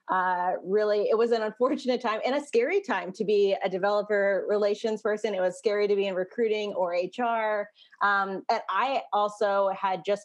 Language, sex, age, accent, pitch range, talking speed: English, female, 20-39, American, 185-210 Hz, 185 wpm